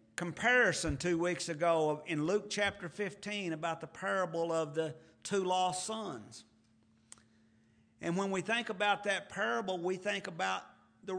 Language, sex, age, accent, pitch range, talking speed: English, male, 50-69, American, 120-195 Hz, 145 wpm